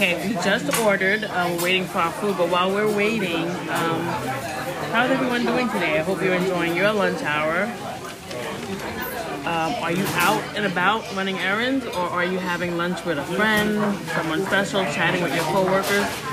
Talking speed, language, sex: 175 wpm, English, female